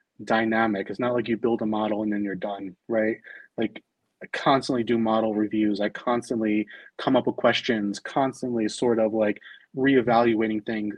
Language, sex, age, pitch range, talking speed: English, male, 30-49, 110-130 Hz, 170 wpm